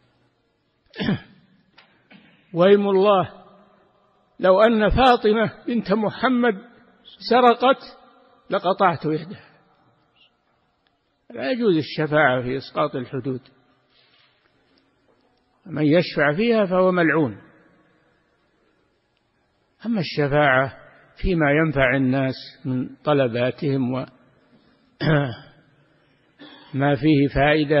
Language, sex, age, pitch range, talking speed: Arabic, male, 60-79, 140-200 Hz, 65 wpm